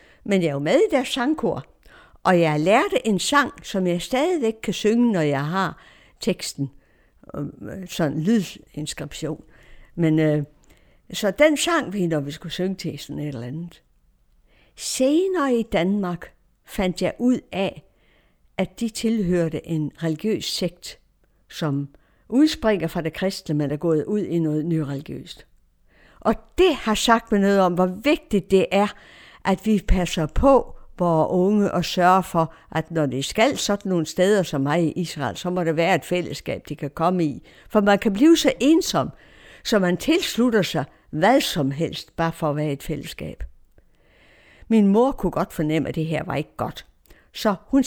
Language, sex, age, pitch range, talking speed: Danish, female, 60-79, 155-220 Hz, 170 wpm